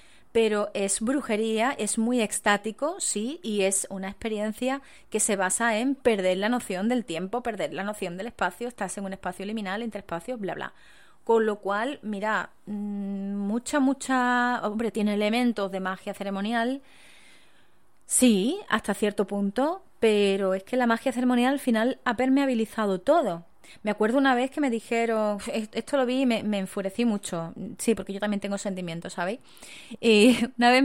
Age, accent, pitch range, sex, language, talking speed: 20-39, Spanish, 200-245 Hz, female, English, 165 wpm